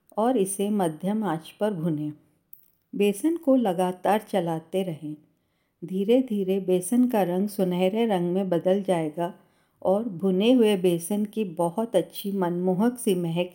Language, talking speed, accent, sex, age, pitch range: Hindi, 135 wpm, native, female, 50-69, 175-215 Hz